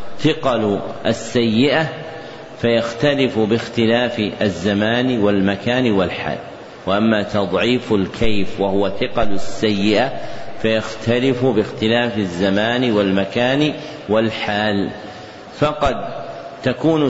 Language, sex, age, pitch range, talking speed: Arabic, male, 50-69, 105-130 Hz, 70 wpm